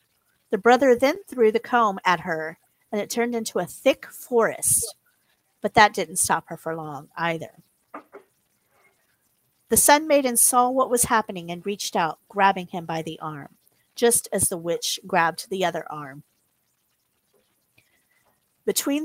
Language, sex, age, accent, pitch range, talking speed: English, female, 40-59, American, 170-235 Hz, 150 wpm